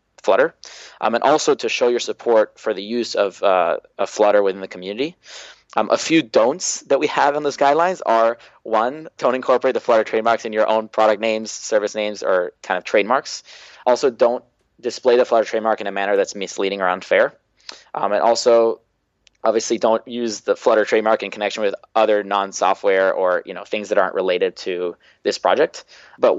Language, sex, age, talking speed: English, male, 20-39, 190 wpm